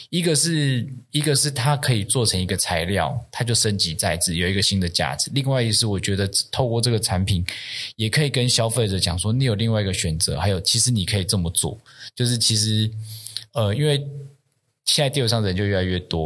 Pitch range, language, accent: 95-120 Hz, Chinese, native